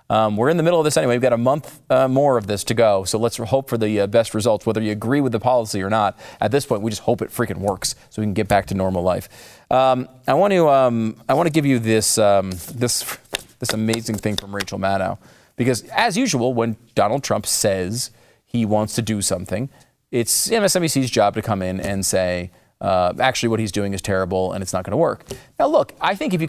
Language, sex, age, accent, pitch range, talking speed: English, male, 30-49, American, 105-150 Hz, 245 wpm